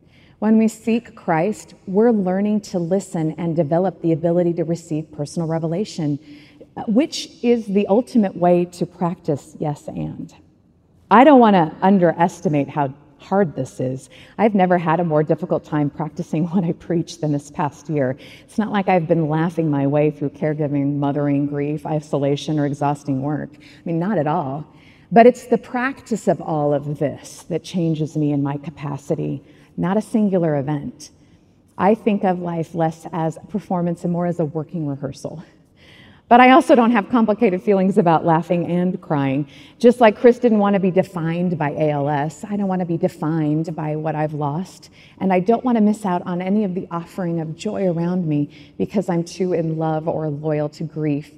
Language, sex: English, female